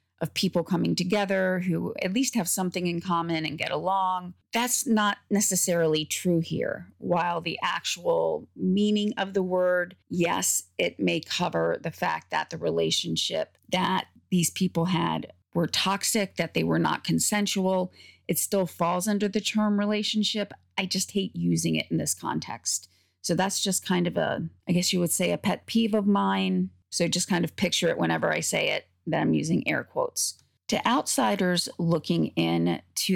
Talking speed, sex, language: 175 wpm, female, English